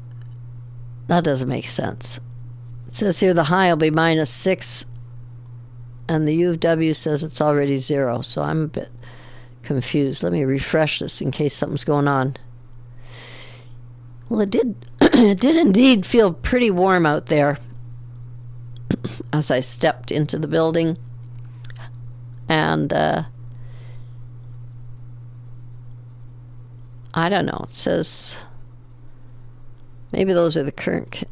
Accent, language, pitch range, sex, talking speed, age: American, English, 120-170 Hz, female, 125 wpm, 60-79